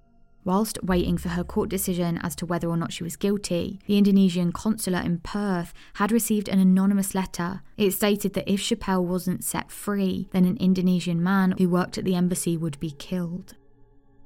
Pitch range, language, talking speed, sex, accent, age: 175-195 Hz, English, 185 wpm, female, British, 20-39